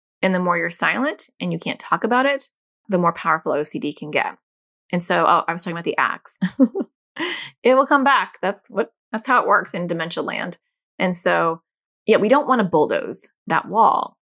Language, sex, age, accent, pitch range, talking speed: English, female, 30-49, American, 165-220 Hz, 205 wpm